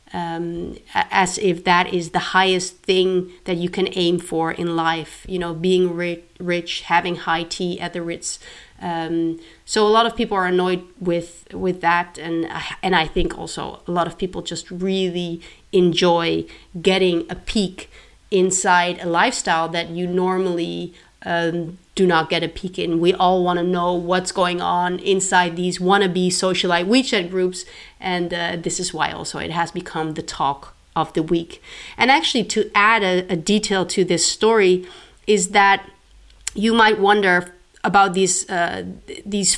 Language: English